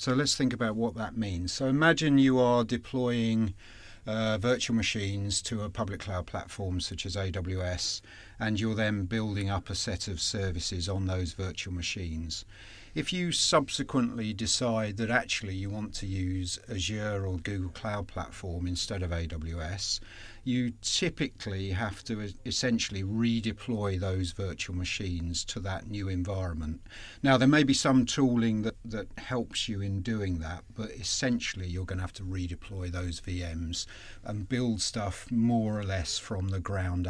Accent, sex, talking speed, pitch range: British, male, 160 wpm, 95-120 Hz